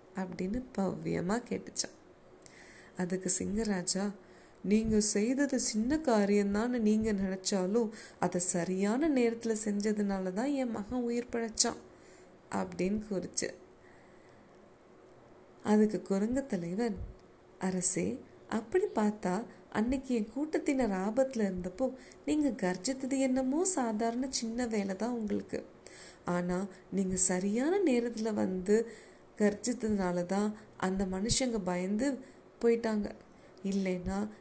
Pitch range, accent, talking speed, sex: 185-235 Hz, native, 65 wpm, female